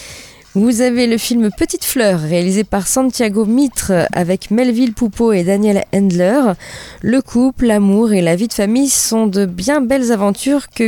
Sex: female